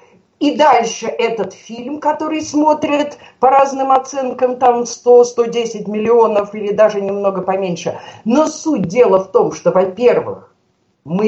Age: 50-69